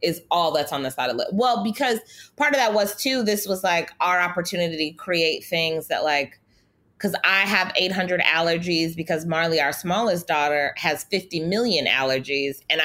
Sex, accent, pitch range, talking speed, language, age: female, American, 150-200 Hz, 190 wpm, English, 20-39